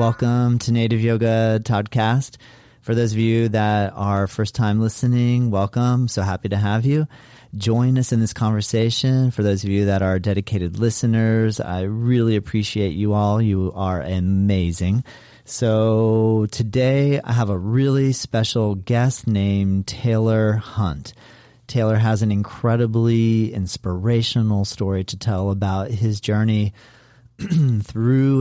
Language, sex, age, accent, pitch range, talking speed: English, male, 40-59, American, 100-115 Hz, 135 wpm